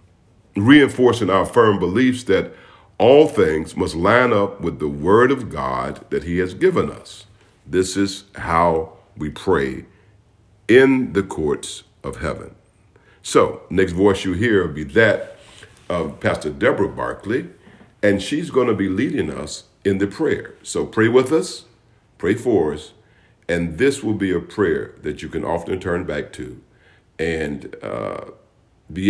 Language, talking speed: English, 155 wpm